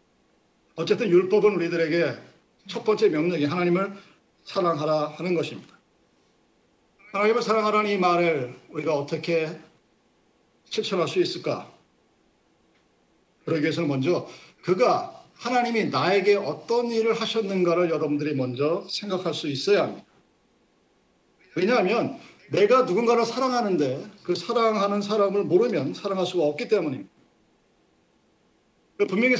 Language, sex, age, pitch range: Korean, male, 50-69, 175-235 Hz